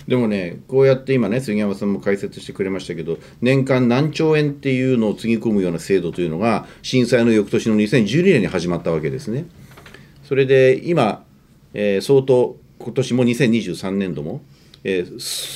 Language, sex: Japanese, male